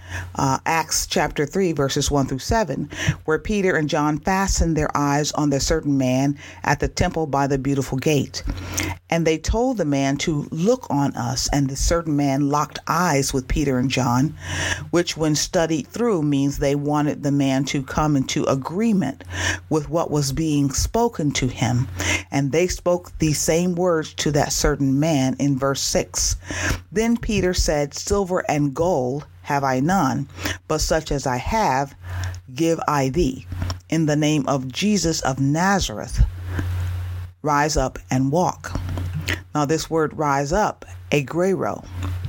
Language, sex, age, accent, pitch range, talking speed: English, female, 40-59, American, 125-160 Hz, 160 wpm